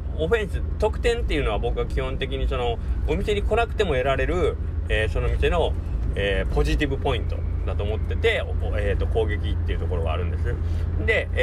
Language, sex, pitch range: Japanese, male, 75-90 Hz